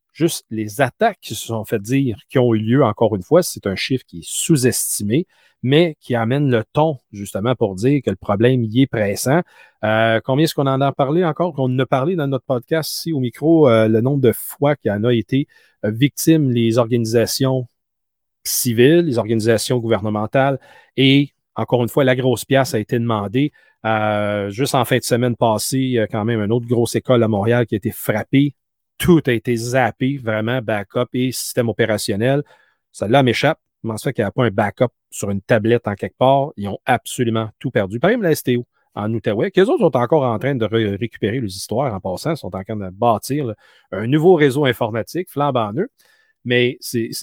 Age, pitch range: 40-59, 110-135 Hz